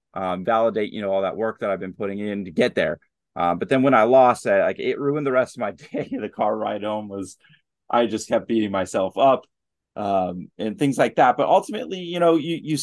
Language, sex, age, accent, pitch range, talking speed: English, male, 30-49, American, 100-135 Hz, 245 wpm